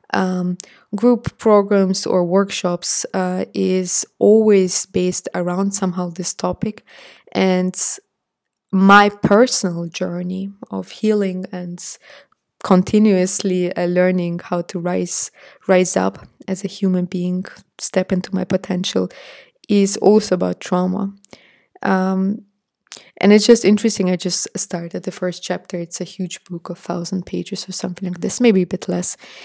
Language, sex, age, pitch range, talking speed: English, female, 20-39, 180-195 Hz, 130 wpm